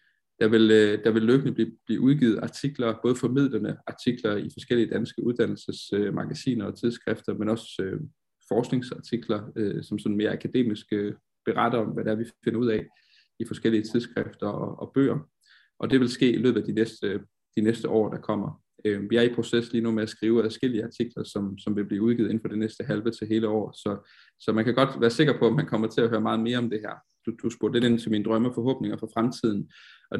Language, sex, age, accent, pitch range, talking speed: Danish, male, 20-39, native, 110-125 Hz, 215 wpm